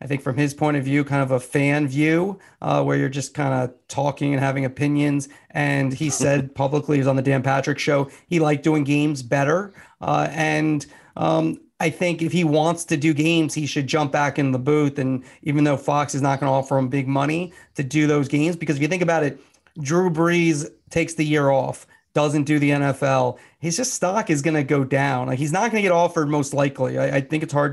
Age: 40-59